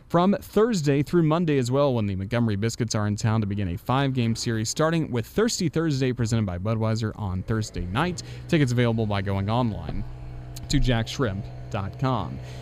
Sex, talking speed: male, 170 wpm